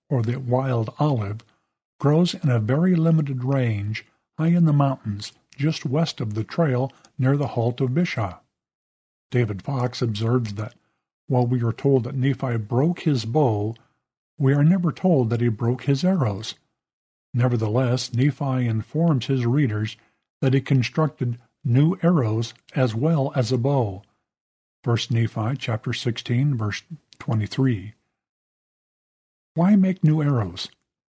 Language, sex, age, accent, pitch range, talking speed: English, male, 50-69, American, 115-145 Hz, 135 wpm